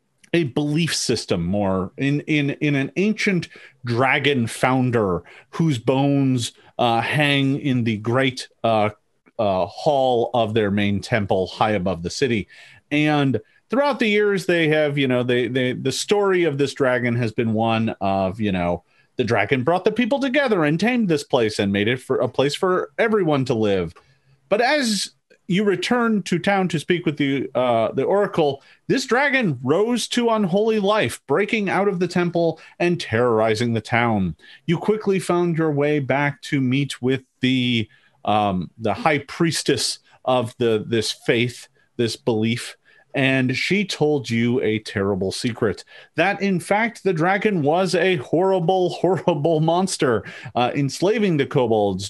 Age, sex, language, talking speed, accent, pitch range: 40-59, male, English, 160 wpm, American, 120-185 Hz